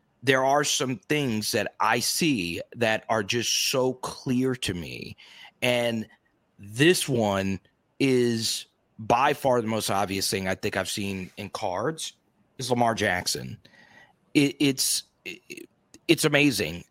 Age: 30-49